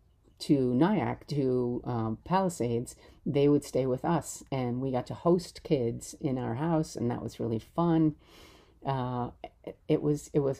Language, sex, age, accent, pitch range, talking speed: English, female, 50-69, American, 120-160 Hz, 160 wpm